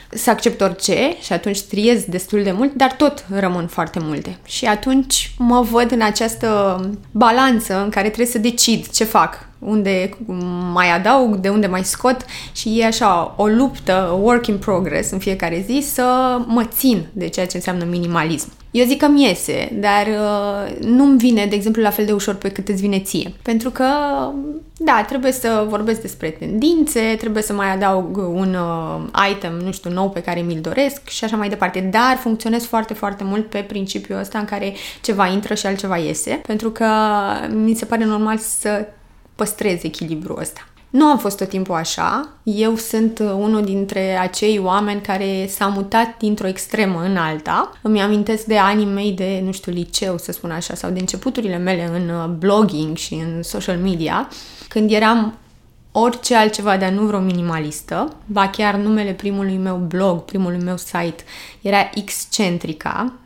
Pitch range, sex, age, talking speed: 185-225 Hz, female, 20-39, 175 wpm